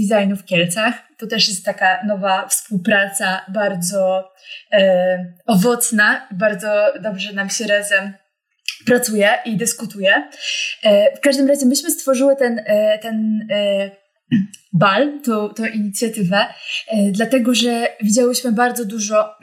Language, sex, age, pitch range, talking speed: Polish, female, 20-39, 205-250 Hz, 125 wpm